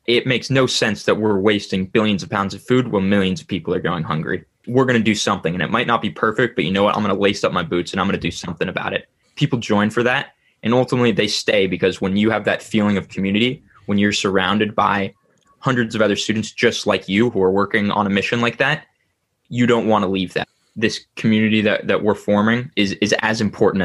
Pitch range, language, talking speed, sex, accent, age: 100-120 Hz, English, 250 wpm, male, American, 10-29